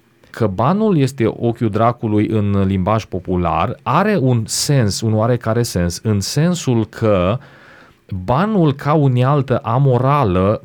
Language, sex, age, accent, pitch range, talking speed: Romanian, male, 30-49, native, 95-120 Hz, 120 wpm